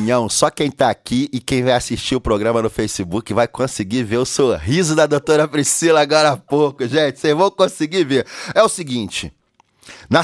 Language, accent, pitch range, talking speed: Portuguese, Brazilian, 115-165 Hz, 195 wpm